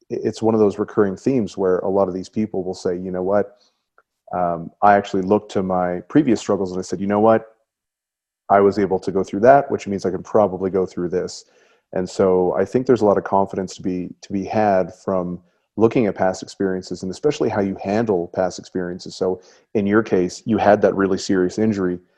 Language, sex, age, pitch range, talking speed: English, male, 30-49, 90-105 Hz, 220 wpm